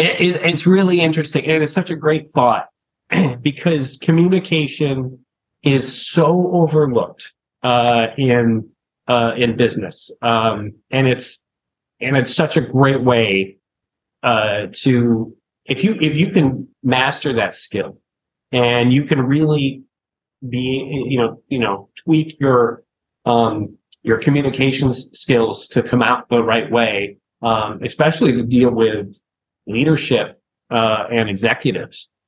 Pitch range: 120-160 Hz